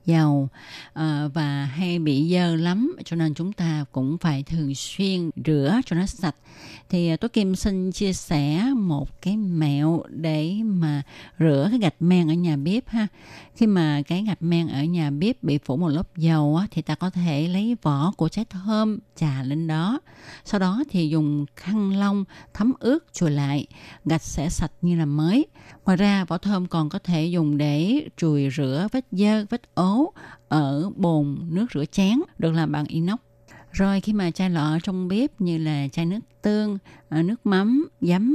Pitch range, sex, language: 150-205 Hz, female, Vietnamese